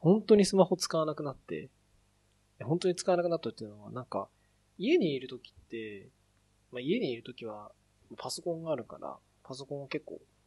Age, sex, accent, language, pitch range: 20-39, male, native, Japanese, 110-165 Hz